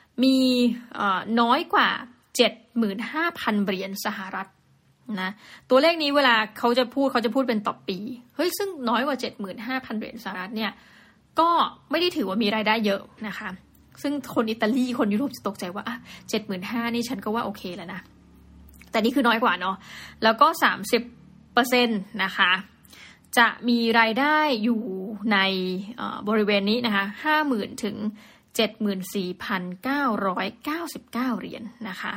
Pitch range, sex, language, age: 205-250 Hz, female, Thai, 20-39